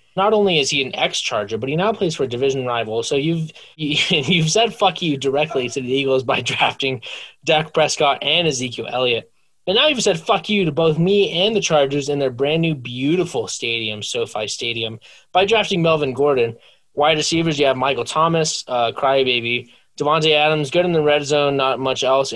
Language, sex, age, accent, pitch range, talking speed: English, male, 20-39, American, 135-175 Hz, 195 wpm